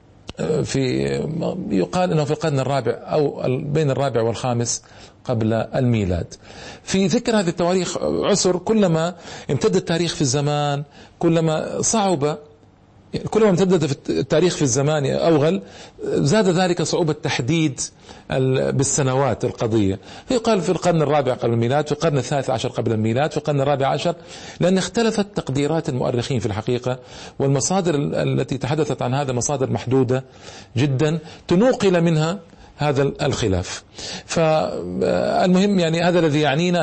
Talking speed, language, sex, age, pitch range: 120 wpm, Arabic, male, 40-59, 125-170 Hz